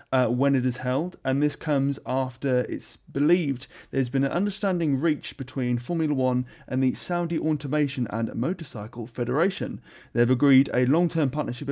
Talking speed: 160 wpm